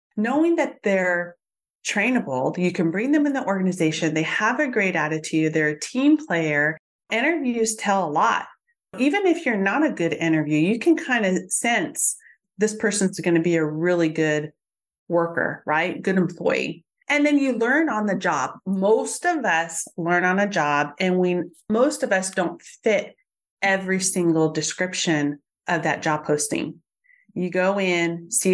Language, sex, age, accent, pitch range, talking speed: English, female, 30-49, American, 170-225 Hz, 170 wpm